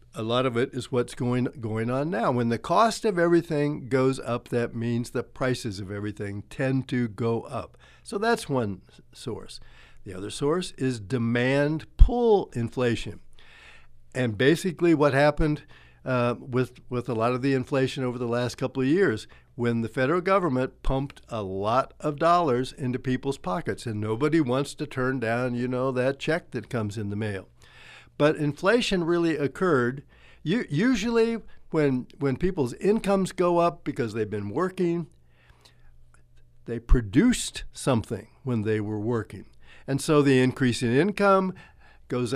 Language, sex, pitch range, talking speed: English, male, 120-150 Hz, 155 wpm